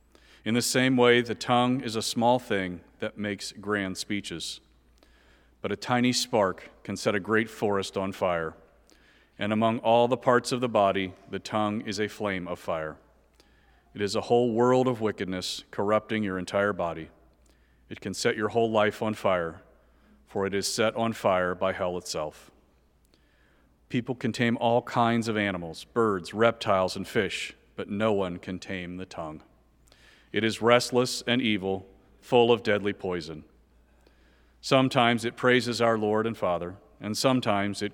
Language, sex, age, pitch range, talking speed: English, male, 40-59, 90-120 Hz, 165 wpm